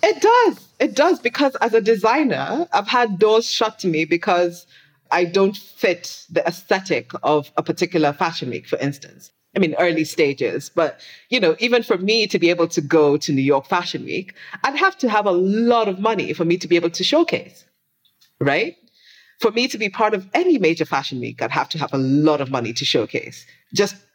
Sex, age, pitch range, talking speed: female, 30-49, 145-190 Hz, 210 wpm